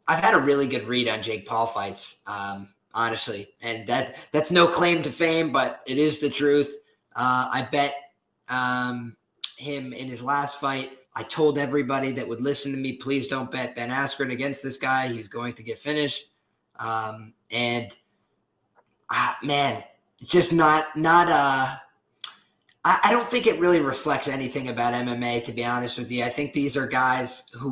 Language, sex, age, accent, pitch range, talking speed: English, male, 20-39, American, 120-145 Hz, 180 wpm